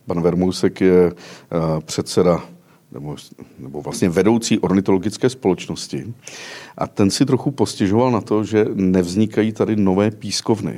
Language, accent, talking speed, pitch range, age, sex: Czech, native, 115 wpm, 90-105 Hz, 50-69, male